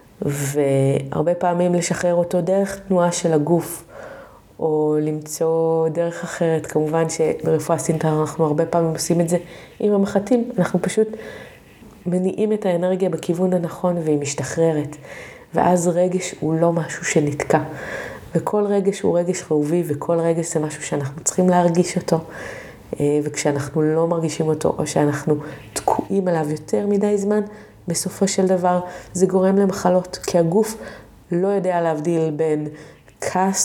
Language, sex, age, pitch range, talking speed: Hebrew, female, 30-49, 155-190 Hz, 135 wpm